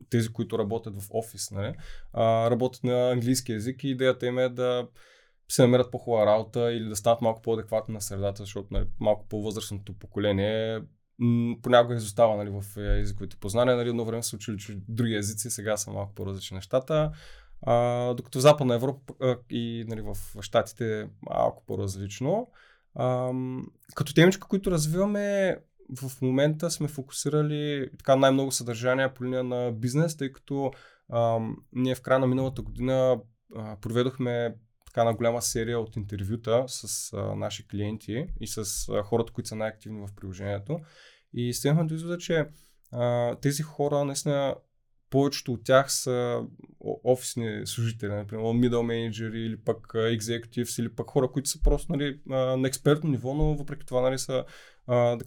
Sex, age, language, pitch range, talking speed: male, 20-39, Bulgarian, 110-130 Hz, 160 wpm